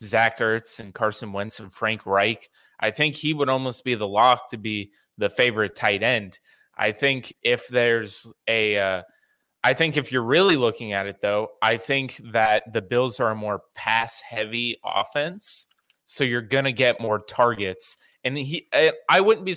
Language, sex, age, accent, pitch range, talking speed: English, male, 20-39, American, 105-130 Hz, 185 wpm